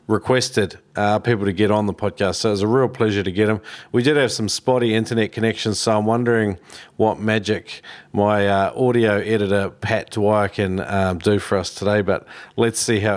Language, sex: English, male